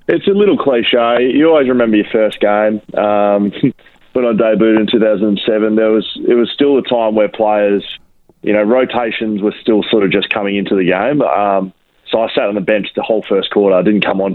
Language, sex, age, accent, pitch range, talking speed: English, male, 20-39, Australian, 100-110 Hz, 230 wpm